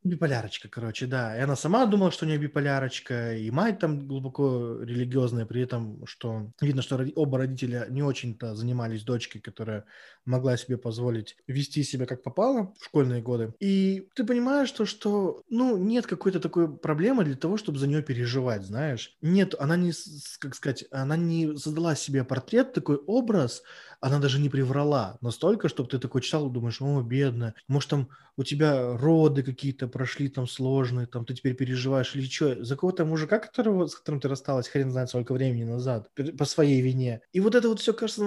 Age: 20-39